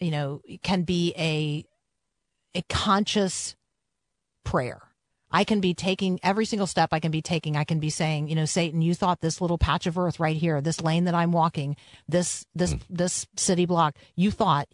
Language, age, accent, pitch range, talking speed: English, 40-59, American, 155-195 Hz, 195 wpm